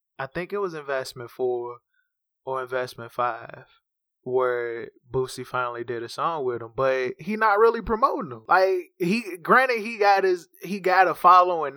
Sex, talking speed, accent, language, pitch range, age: male, 170 wpm, American, English, 135-170 Hz, 20-39